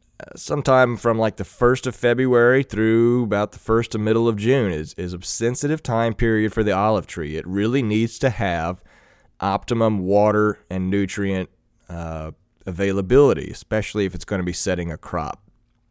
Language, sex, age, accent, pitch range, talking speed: English, male, 30-49, American, 95-115 Hz, 170 wpm